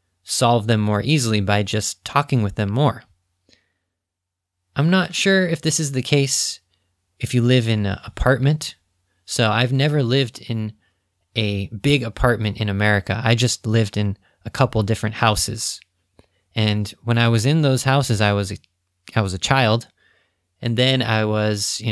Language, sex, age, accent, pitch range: Japanese, male, 20-39, American, 95-120 Hz